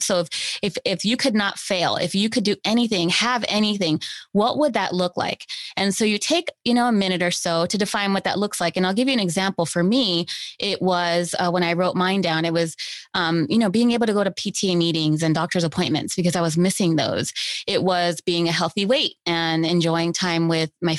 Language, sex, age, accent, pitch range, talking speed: English, female, 20-39, American, 165-200 Hz, 235 wpm